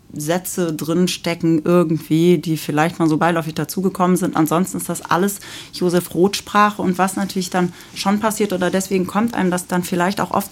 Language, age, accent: German, 40-59, German